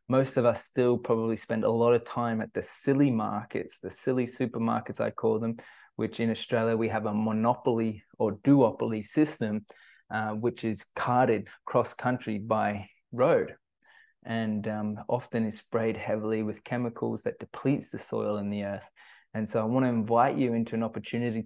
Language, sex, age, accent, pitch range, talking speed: English, male, 20-39, Australian, 110-130 Hz, 170 wpm